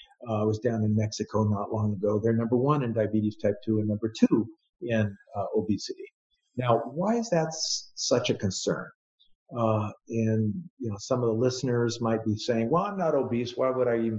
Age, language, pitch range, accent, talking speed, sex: 50-69, English, 115-155 Hz, American, 205 wpm, male